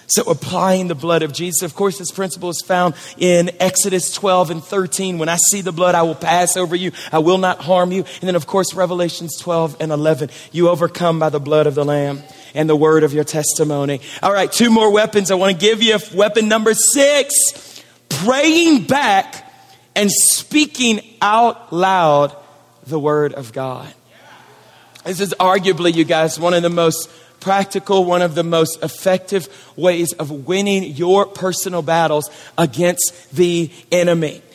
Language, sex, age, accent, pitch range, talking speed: English, male, 40-59, American, 160-205 Hz, 175 wpm